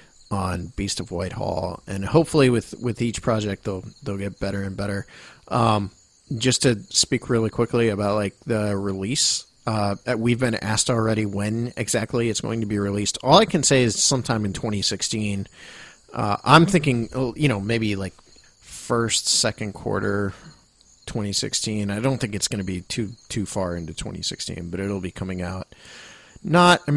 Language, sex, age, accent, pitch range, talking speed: English, male, 40-59, American, 100-125 Hz, 180 wpm